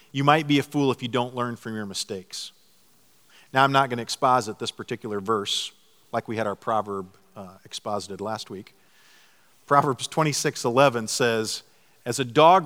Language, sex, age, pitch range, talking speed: English, male, 50-69, 125-180 Hz, 170 wpm